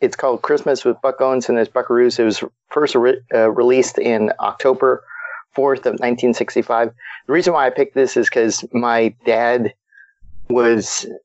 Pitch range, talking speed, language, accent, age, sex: 115-150 Hz, 165 wpm, English, American, 40-59, male